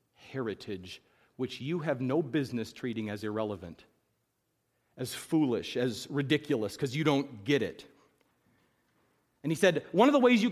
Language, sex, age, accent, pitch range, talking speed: English, male, 40-59, American, 150-220 Hz, 150 wpm